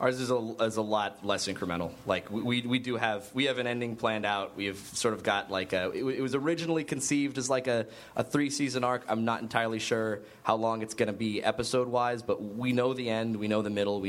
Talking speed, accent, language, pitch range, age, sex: 260 wpm, American, English, 105-130 Hz, 20-39, male